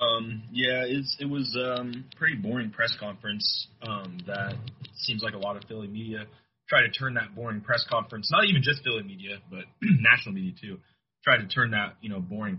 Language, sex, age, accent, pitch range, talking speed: English, male, 20-39, American, 115-155 Hz, 195 wpm